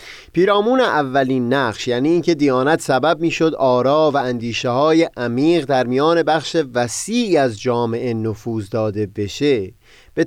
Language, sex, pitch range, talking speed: Persian, male, 120-170 Hz, 140 wpm